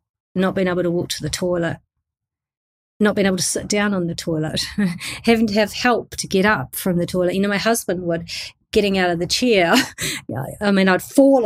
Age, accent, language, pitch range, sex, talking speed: 30-49, Australian, English, 170-210 Hz, female, 215 wpm